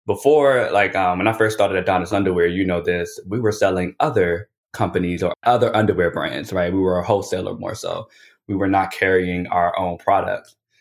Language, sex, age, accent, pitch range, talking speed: English, male, 20-39, American, 90-105 Hz, 195 wpm